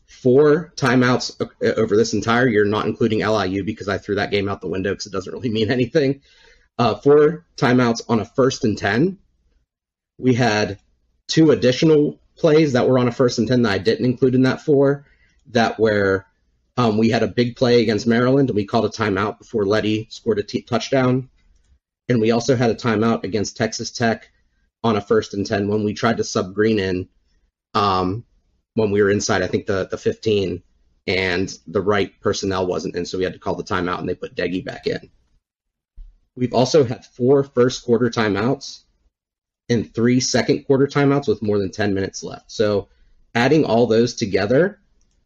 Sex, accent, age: male, American, 30-49